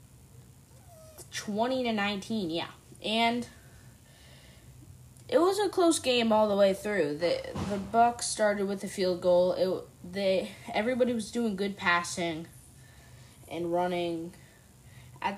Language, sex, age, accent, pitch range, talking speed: English, female, 20-39, American, 145-215 Hz, 125 wpm